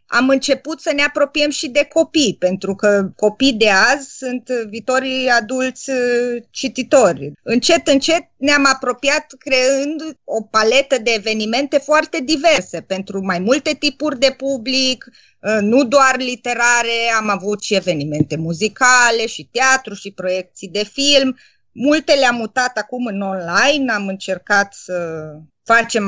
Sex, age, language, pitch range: female, 30-49, Romanian, 210-270 Hz